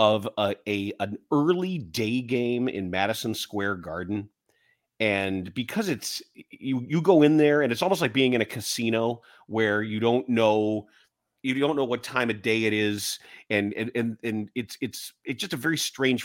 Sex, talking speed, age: male, 190 wpm, 30-49